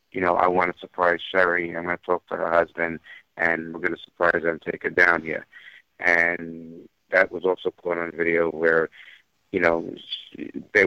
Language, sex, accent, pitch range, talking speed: English, male, American, 85-90 Hz, 200 wpm